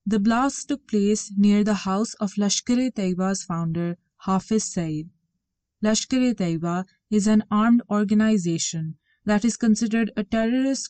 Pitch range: 140-210 Hz